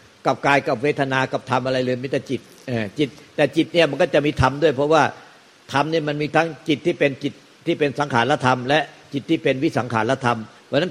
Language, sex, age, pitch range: Thai, male, 60-79, 125-150 Hz